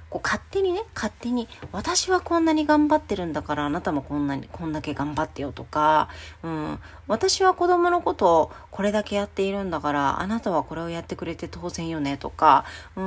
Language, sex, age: Japanese, female, 40-59